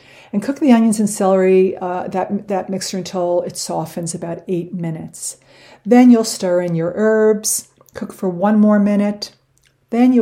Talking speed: 170 wpm